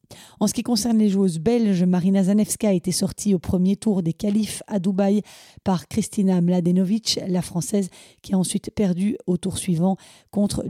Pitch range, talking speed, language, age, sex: 185-215 Hz, 180 wpm, French, 30-49, female